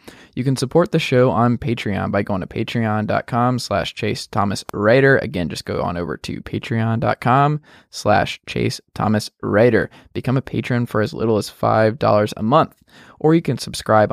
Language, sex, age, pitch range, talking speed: English, male, 20-39, 110-130 Hz, 170 wpm